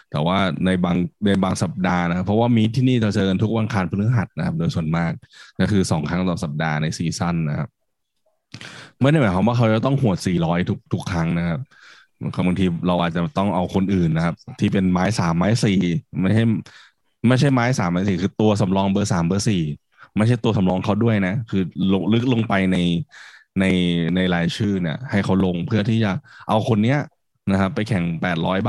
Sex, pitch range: male, 90-110 Hz